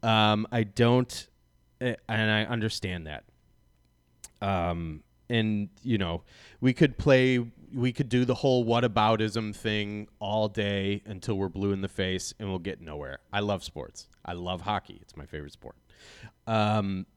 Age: 30-49